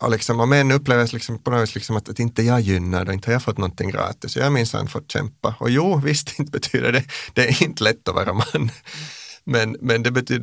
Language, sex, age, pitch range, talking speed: Finnish, male, 30-49, 110-140 Hz, 225 wpm